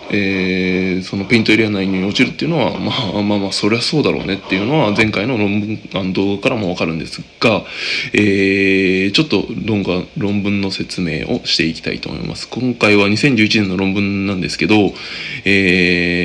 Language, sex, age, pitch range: Japanese, male, 20-39, 90-115 Hz